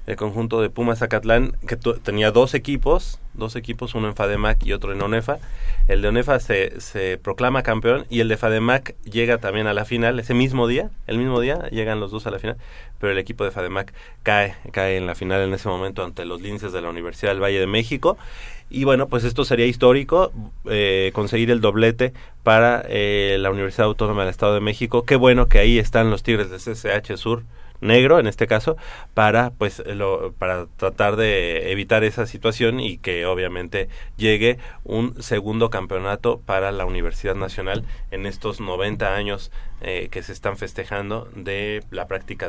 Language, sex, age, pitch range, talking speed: Spanish, male, 30-49, 100-120 Hz, 190 wpm